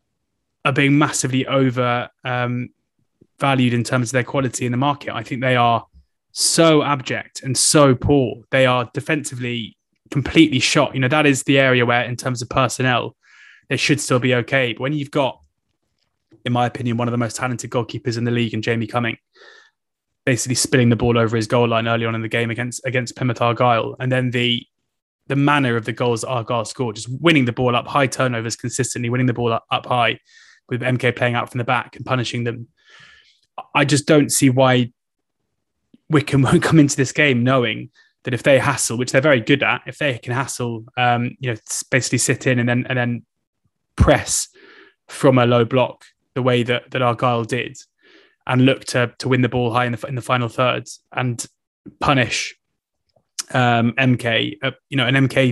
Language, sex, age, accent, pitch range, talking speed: English, male, 20-39, British, 120-135 Hz, 195 wpm